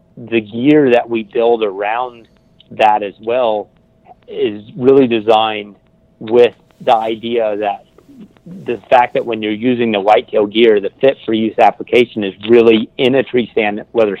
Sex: male